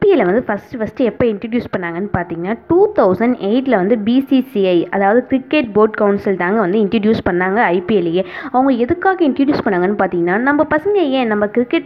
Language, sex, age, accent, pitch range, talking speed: Tamil, female, 20-39, native, 205-265 Hz, 145 wpm